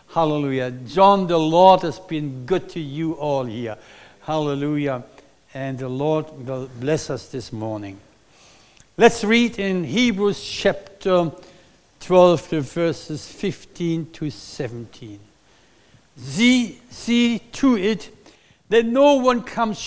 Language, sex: English, male